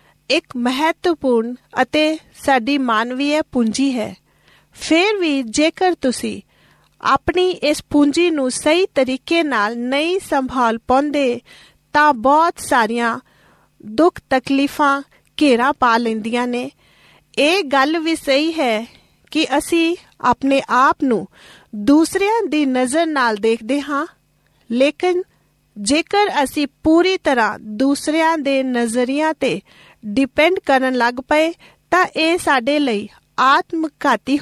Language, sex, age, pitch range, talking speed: Punjabi, female, 40-59, 255-320 Hz, 110 wpm